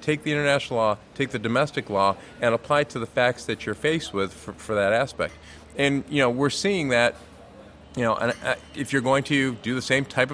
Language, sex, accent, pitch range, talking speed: English, male, American, 110-135 Hz, 230 wpm